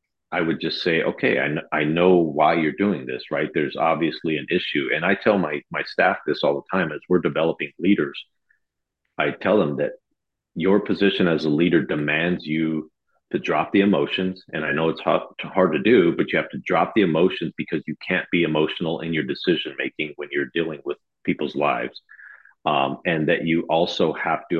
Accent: American